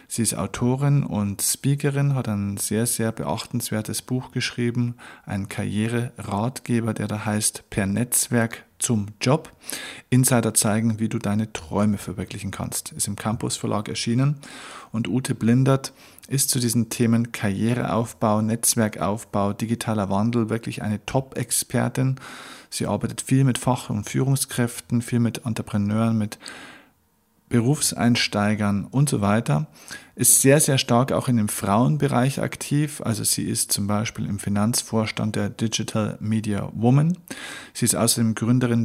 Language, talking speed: German, 135 wpm